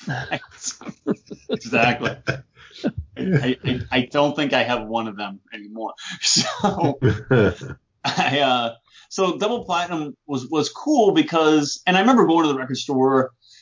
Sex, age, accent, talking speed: male, 30-49, American, 130 wpm